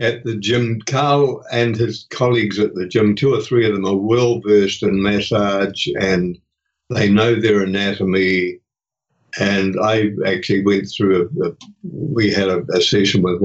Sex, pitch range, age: male, 100-120 Hz, 60-79